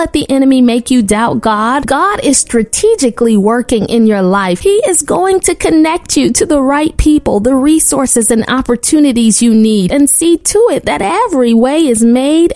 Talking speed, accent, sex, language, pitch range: 185 wpm, American, female, English, 230-310 Hz